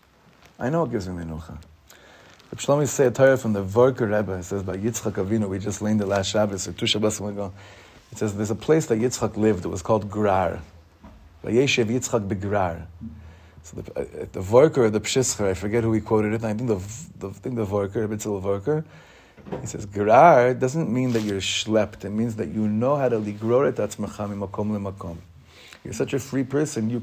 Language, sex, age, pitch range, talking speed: English, male, 30-49, 100-130 Hz, 210 wpm